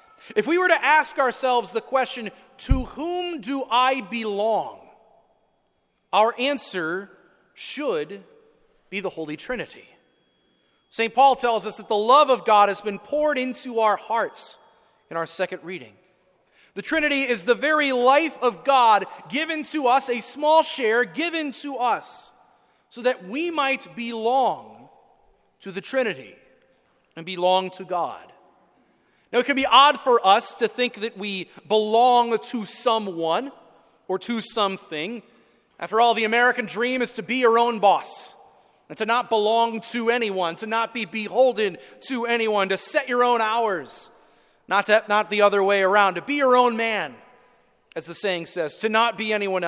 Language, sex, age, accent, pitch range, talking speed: English, male, 30-49, American, 210-265 Hz, 160 wpm